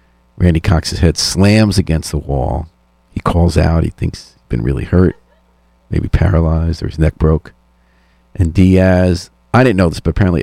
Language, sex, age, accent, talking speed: English, male, 50-69, American, 175 wpm